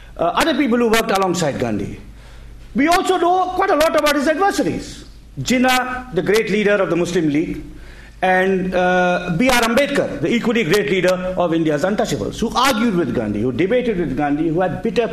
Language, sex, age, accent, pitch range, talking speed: English, male, 50-69, Indian, 170-260 Hz, 185 wpm